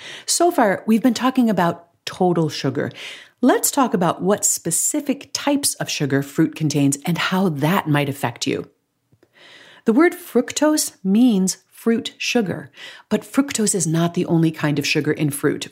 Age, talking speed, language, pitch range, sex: 40-59, 155 wpm, English, 155-235 Hz, female